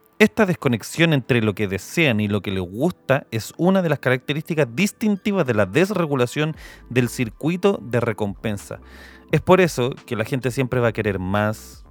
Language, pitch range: Spanish, 100-130 Hz